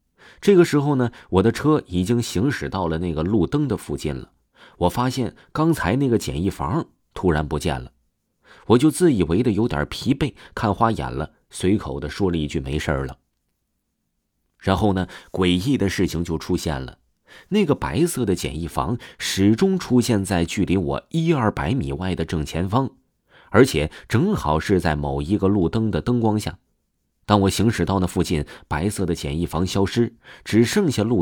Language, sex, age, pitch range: Chinese, male, 30-49, 80-125 Hz